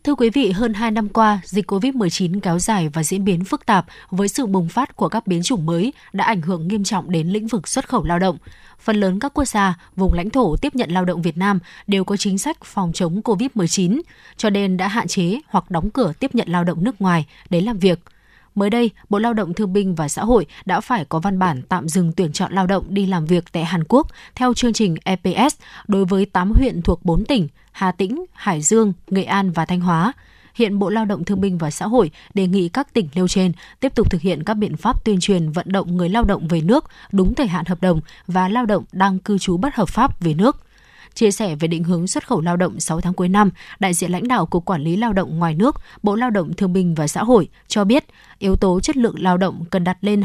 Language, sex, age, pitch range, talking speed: Vietnamese, female, 20-39, 180-225 Hz, 255 wpm